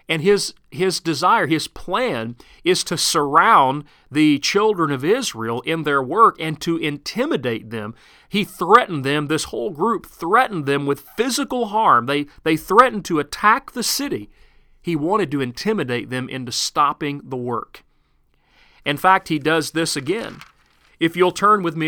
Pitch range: 140-180 Hz